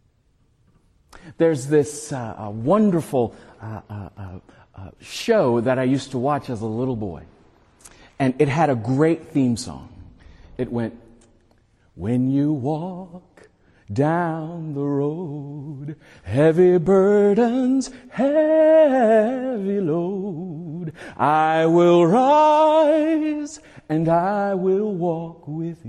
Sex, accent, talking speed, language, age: male, American, 100 wpm, English, 50-69